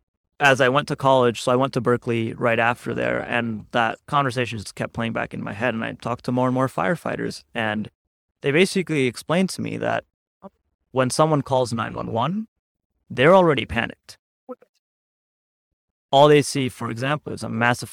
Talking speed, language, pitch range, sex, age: 175 wpm, English, 110-135 Hz, male, 30-49